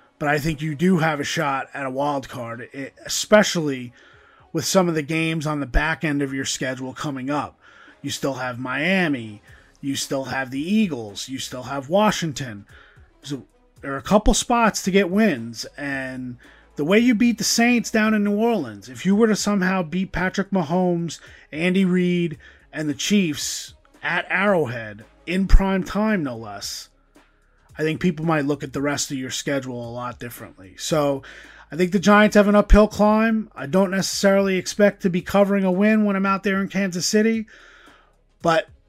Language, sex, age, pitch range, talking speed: English, male, 30-49, 140-195 Hz, 185 wpm